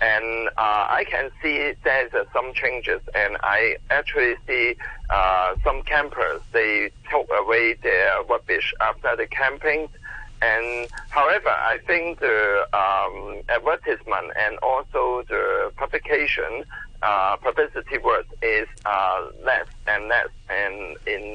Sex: male